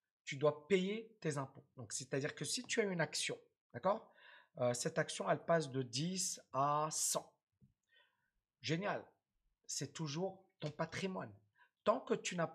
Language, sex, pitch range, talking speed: French, male, 140-195 Hz, 165 wpm